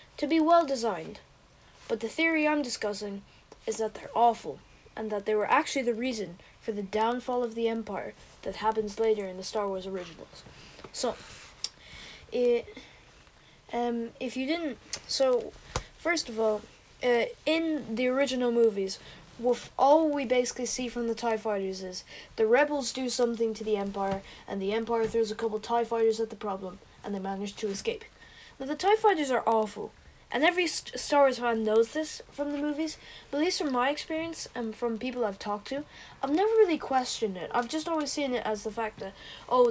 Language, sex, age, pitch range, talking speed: English, female, 10-29, 220-285 Hz, 190 wpm